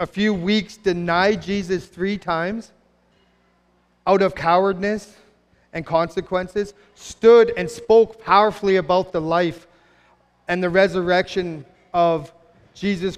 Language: English